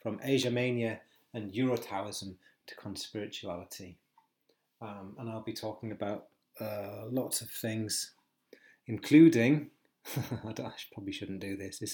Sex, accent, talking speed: male, British, 125 wpm